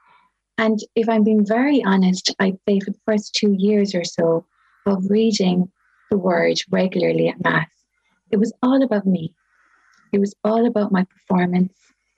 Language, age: English, 30-49